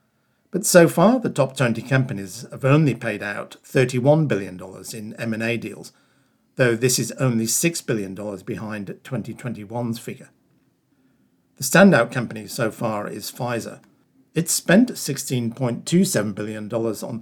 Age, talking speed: 50-69, 130 wpm